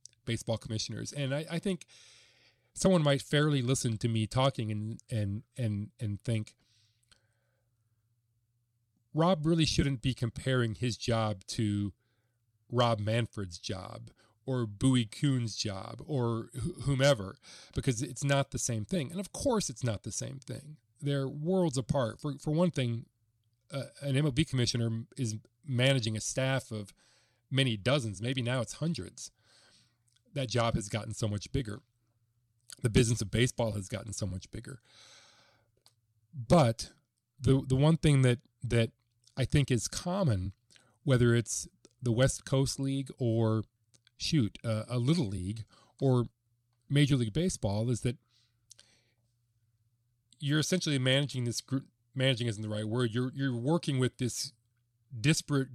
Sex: male